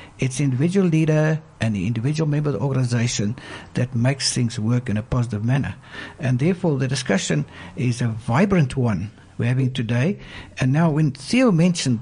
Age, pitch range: 60-79, 125-175 Hz